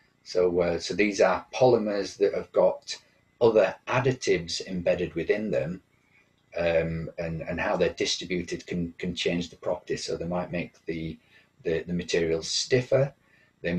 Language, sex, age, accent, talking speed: English, male, 40-59, British, 150 wpm